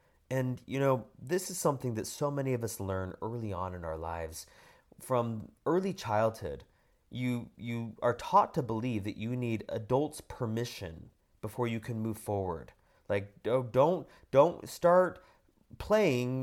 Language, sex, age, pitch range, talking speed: English, male, 30-49, 105-150 Hz, 150 wpm